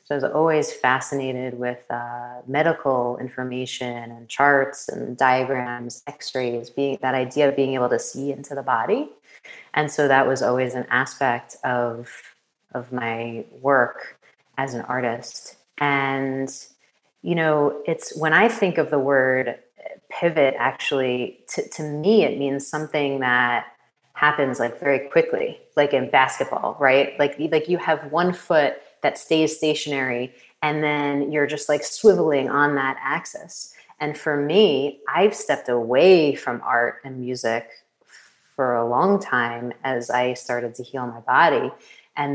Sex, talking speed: female, 150 wpm